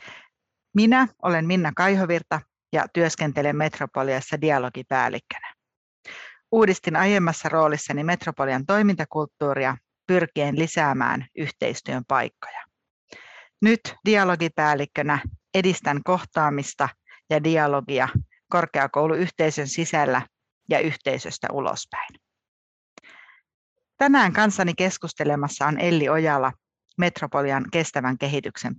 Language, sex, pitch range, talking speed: Finnish, female, 145-180 Hz, 75 wpm